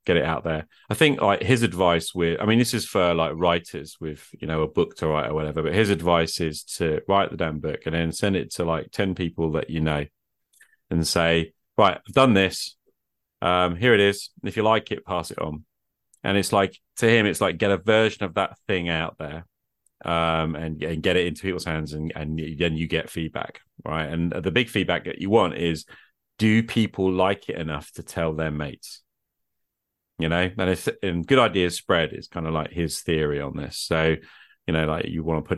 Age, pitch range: 30-49, 80-100 Hz